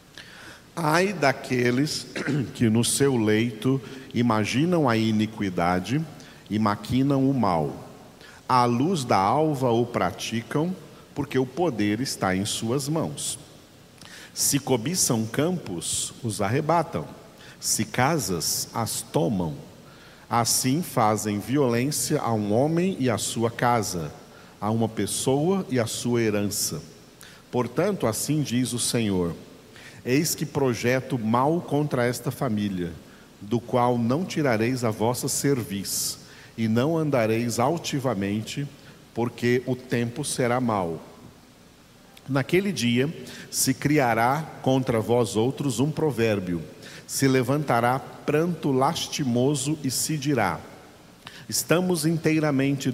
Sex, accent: male, Brazilian